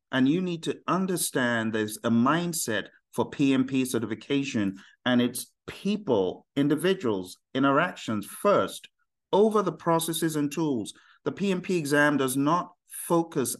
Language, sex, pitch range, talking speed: English, male, 120-170 Hz, 125 wpm